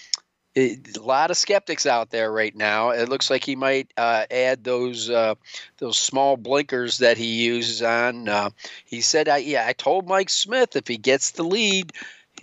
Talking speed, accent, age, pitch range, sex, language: 185 wpm, American, 50-69, 115-145 Hz, male, English